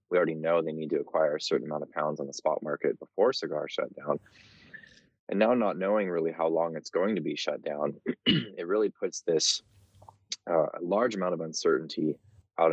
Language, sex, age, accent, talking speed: English, male, 20-39, American, 205 wpm